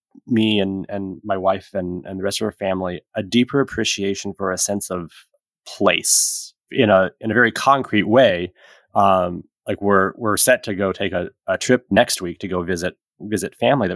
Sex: male